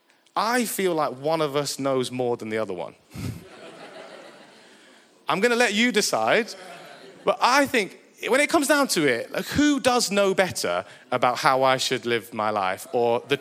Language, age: English, 30-49